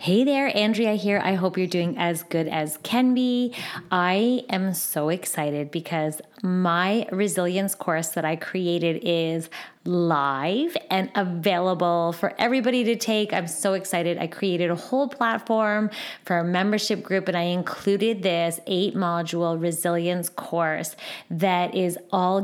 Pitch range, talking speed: 170-205 Hz, 145 wpm